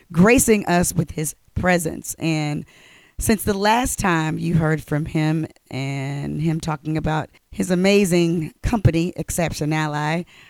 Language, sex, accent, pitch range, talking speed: English, female, American, 155-185 Hz, 130 wpm